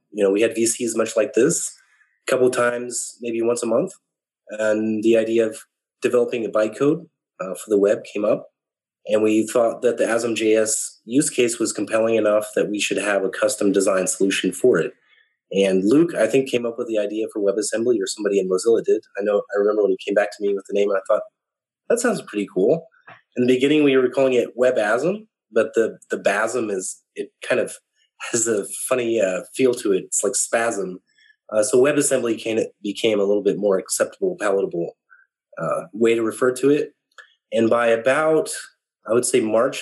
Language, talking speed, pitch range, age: English, 200 wpm, 105-135 Hz, 30-49